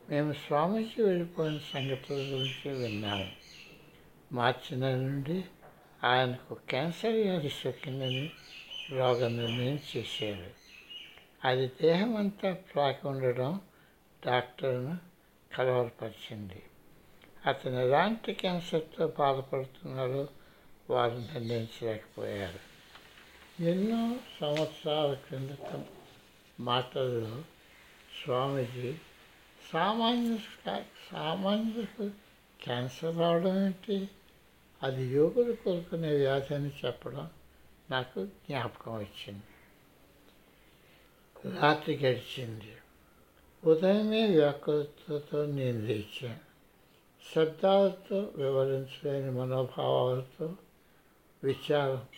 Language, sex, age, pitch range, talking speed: Telugu, male, 60-79, 125-165 Hz, 65 wpm